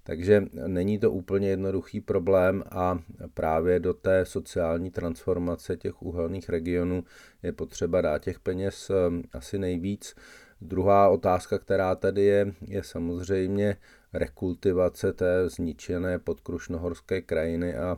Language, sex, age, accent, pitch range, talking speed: Czech, male, 40-59, native, 85-95 Hz, 115 wpm